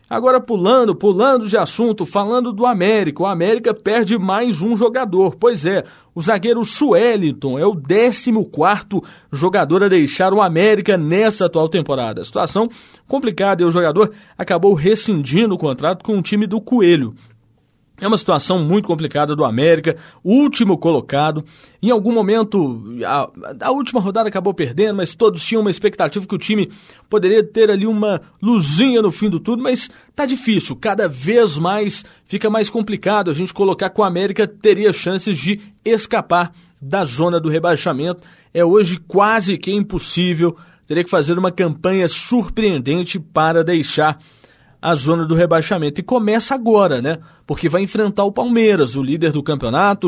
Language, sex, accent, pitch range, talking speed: Portuguese, male, Brazilian, 165-220 Hz, 160 wpm